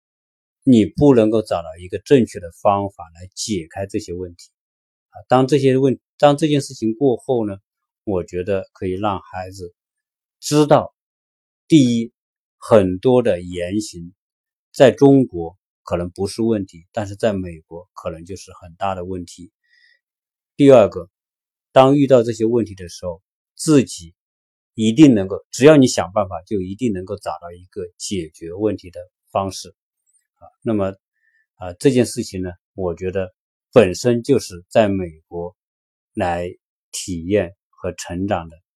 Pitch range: 90-120 Hz